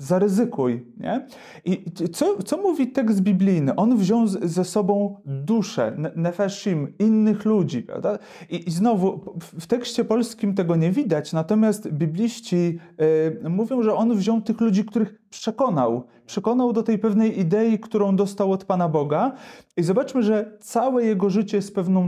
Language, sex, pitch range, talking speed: Polish, male, 170-215 Hz, 150 wpm